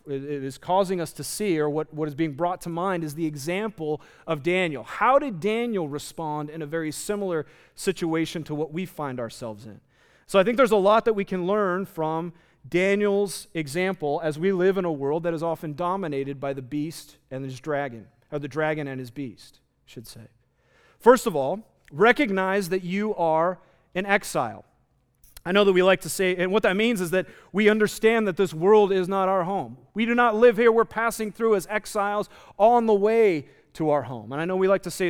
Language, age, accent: English, 40-59, American